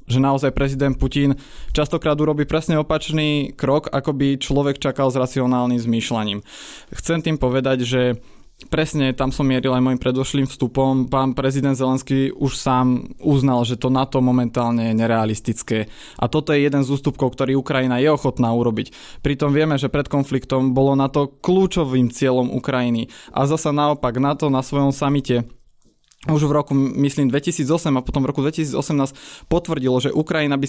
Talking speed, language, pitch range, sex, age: 160 wpm, Slovak, 130-145 Hz, male, 20-39